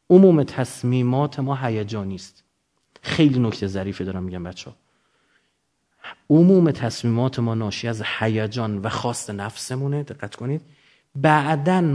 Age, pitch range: 30-49, 130-215 Hz